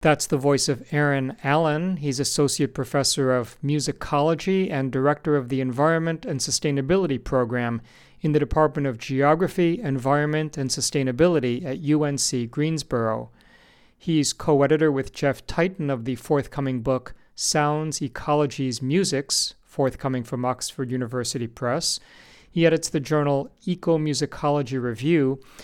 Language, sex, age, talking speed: English, male, 40-59, 130 wpm